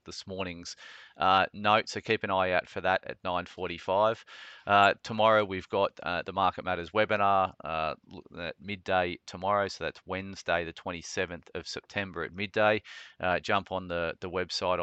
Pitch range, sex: 85-95 Hz, male